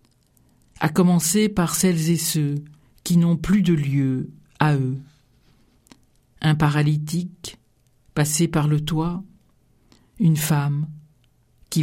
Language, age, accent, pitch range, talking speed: French, 50-69, French, 135-165 Hz, 110 wpm